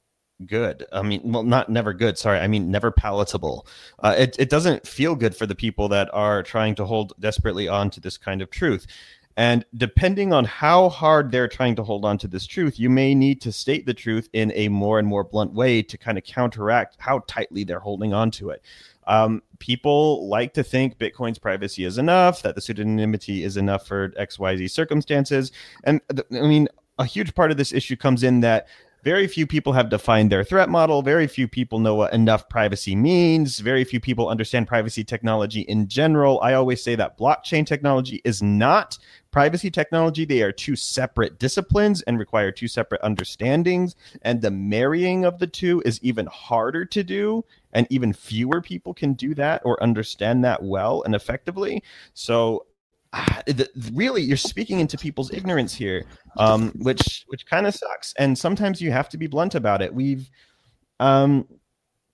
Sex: male